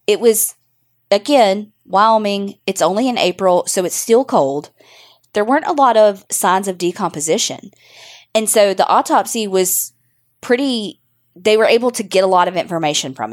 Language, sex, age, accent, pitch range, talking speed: English, female, 20-39, American, 165-215 Hz, 160 wpm